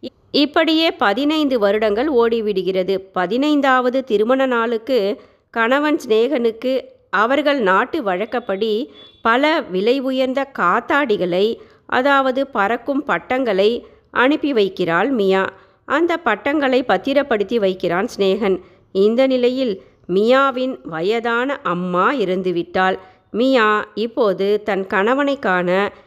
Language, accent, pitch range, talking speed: Tamil, native, 195-260 Hz, 85 wpm